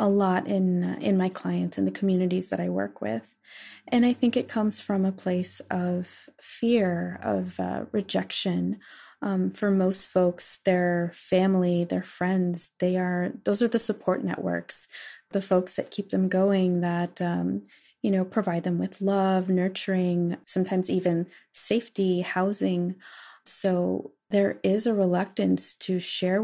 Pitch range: 175-195 Hz